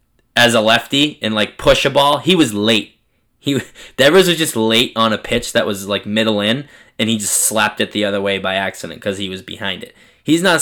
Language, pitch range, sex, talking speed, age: English, 105-135 Hz, male, 230 wpm, 10-29